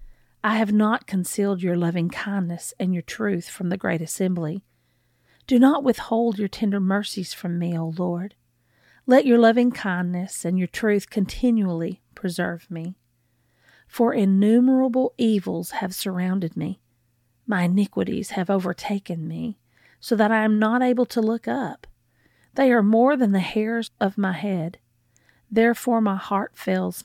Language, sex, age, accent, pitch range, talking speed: English, female, 40-59, American, 170-215 Hz, 145 wpm